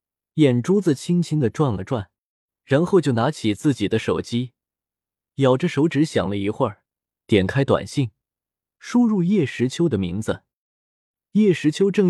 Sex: male